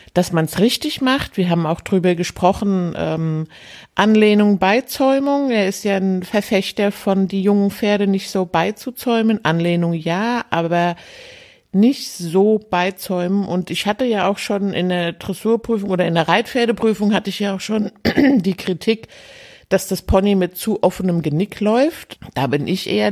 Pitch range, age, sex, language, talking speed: 175-215 Hz, 50-69, female, German, 165 wpm